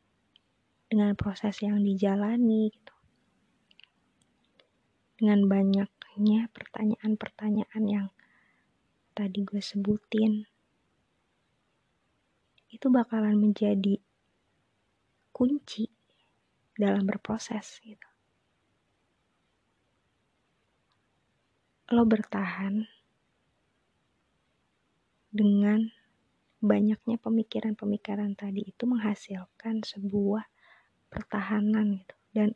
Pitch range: 200-220 Hz